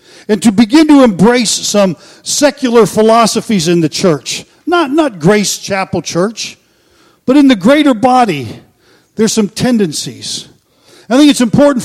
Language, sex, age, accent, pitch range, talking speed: English, male, 50-69, American, 180-245 Hz, 140 wpm